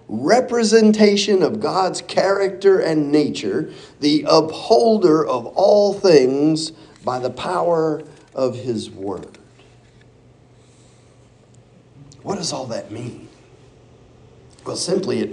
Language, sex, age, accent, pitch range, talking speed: English, male, 50-69, American, 140-200 Hz, 100 wpm